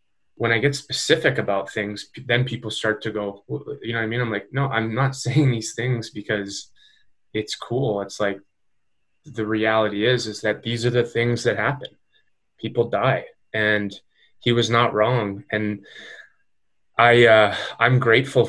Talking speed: 170 wpm